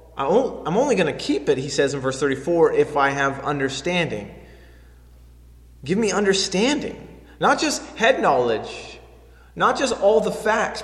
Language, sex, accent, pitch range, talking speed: English, male, American, 135-205 Hz, 150 wpm